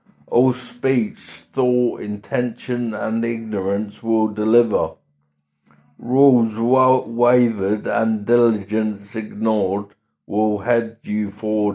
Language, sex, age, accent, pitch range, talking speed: English, male, 50-69, British, 105-120 Hz, 90 wpm